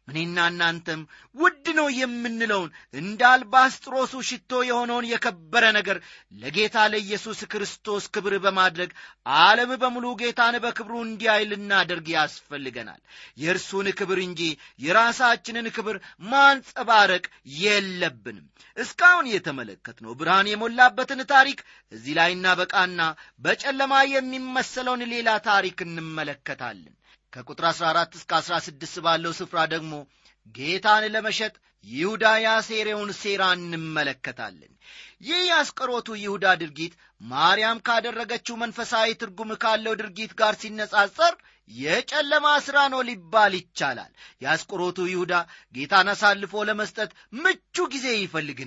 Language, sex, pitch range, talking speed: Amharic, male, 170-240 Hz, 100 wpm